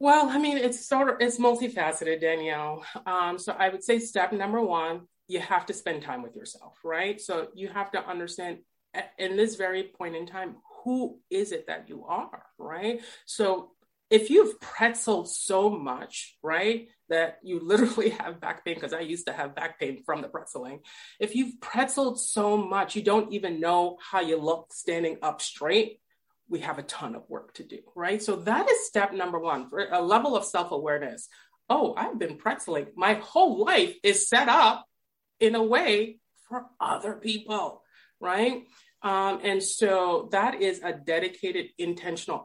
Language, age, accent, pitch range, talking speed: English, 30-49, American, 170-240 Hz, 180 wpm